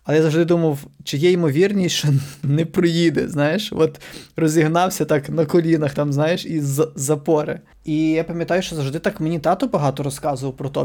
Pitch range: 145-165 Hz